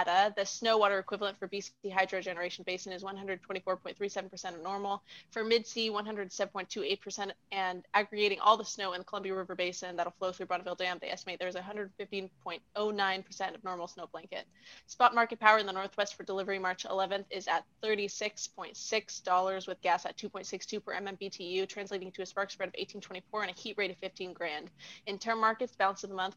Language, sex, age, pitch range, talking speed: English, female, 20-39, 185-205 Hz, 180 wpm